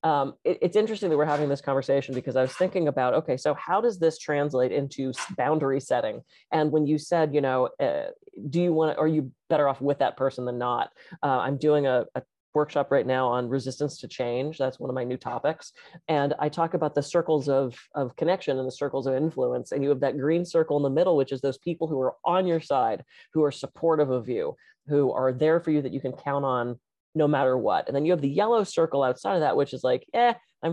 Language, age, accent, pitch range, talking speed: English, 30-49, American, 135-170 Hz, 245 wpm